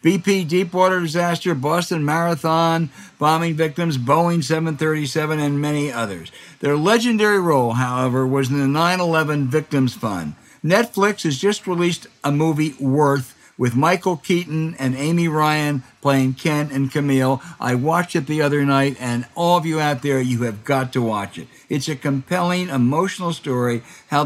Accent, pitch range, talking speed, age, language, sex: American, 130-170 Hz, 155 wpm, 60-79, English, male